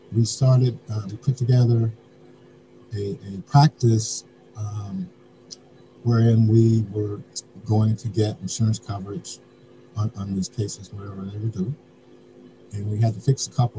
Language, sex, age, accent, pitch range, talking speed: English, male, 50-69, American, 105-125 Hz, 145 wpm